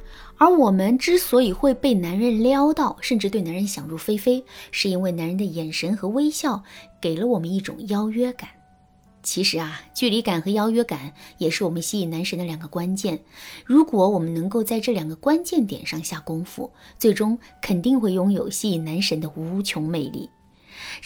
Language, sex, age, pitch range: Chinese, female, 20-39, 175-250 Hz